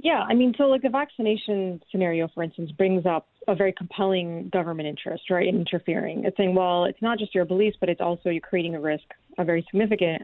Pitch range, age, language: 175-215 Hz, 30-49, English